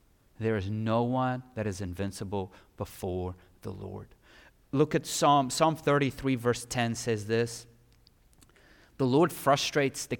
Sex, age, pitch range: male, 30-49, 130-210 Hz